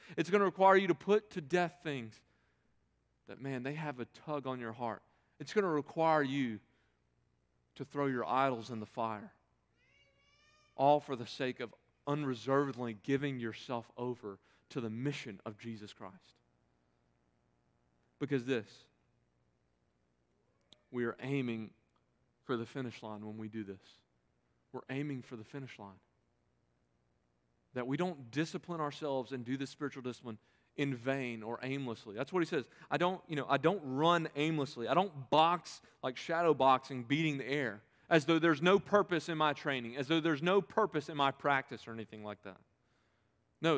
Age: 40-59